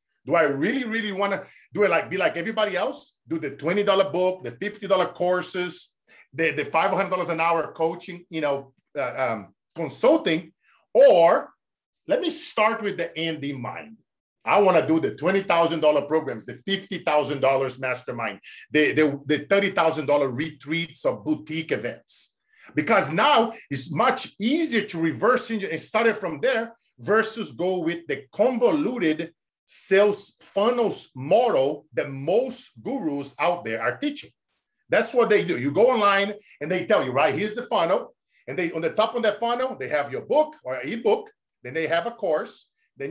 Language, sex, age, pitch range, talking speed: English, male, 50-69, 155-215 Hz, 165 wpm